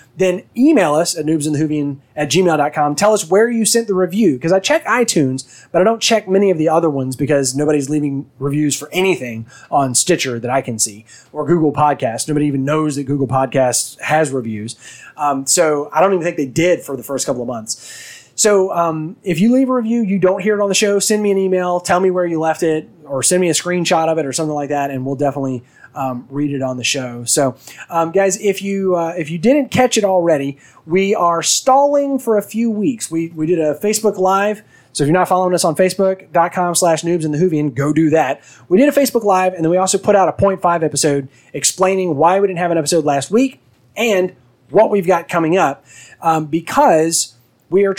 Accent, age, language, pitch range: American, 20-39, English, 145-195 Hz